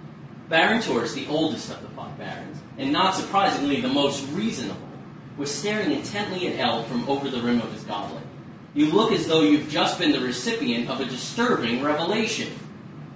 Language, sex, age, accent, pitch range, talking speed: English, male, 30-49, American, 140-205 Hz, 180 wpm